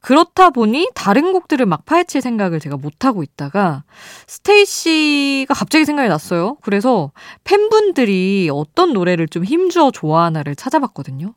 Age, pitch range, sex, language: 20-39, 155-235 Hz, female, Korean